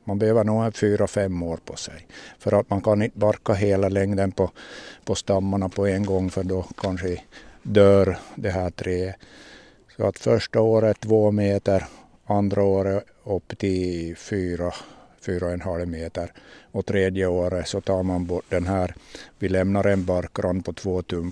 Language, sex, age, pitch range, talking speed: Swedish, male, 60-79, 90-110 Hz, 170 wpm